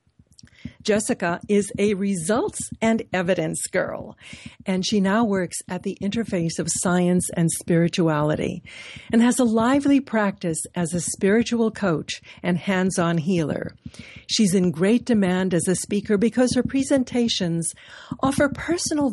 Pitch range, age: 165-235 Hz, 60-79